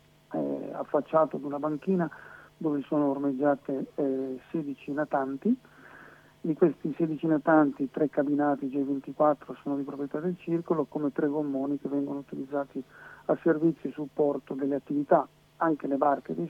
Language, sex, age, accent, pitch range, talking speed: Italian, male, 50-69, native, 140-165 Hz, 140 wpm